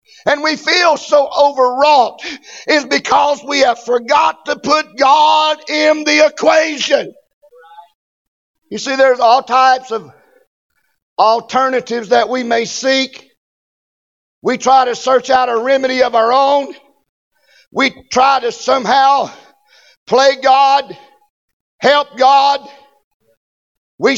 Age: 50-69